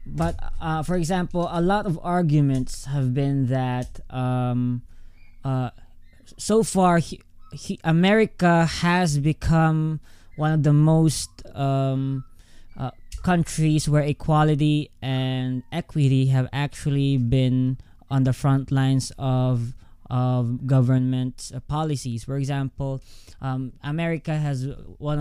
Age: 20-39